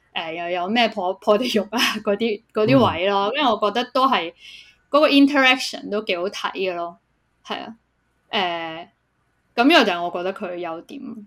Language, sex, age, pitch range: Chinese, female, 20-39, 185-245 Hz